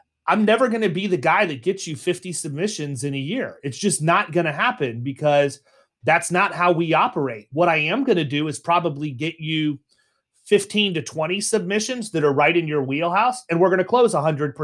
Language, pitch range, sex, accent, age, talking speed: English, 145-190 Hz, male, American, 30-49, 215 wpm